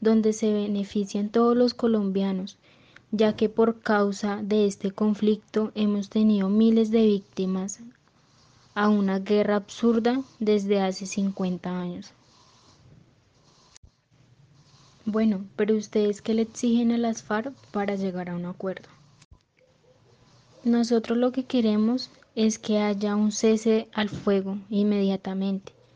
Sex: female